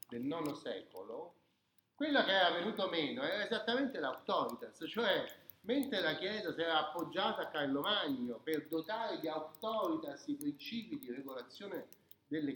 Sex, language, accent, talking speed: male, Italian, native, 145 wpm